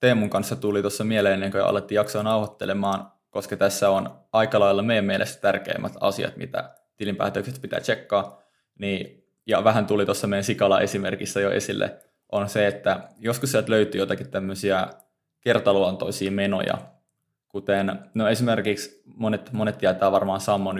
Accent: native